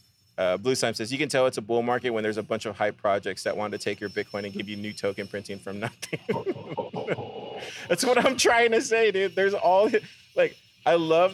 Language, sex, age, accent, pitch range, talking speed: English, male, 30-49, American, 115-150 Hz, 230 wpm